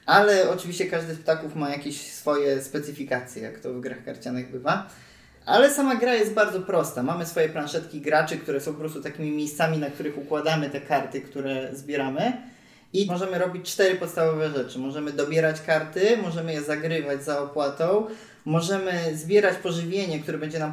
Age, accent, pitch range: 20-39, native, 145-185 Hz